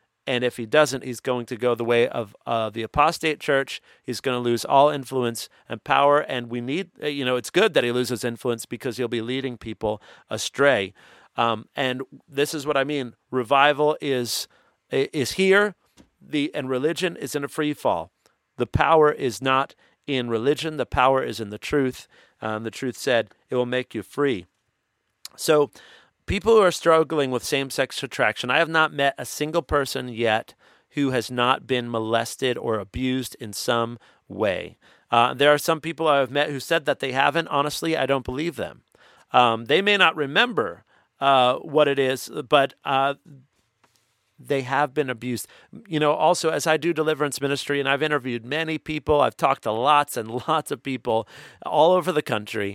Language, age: English, 40-59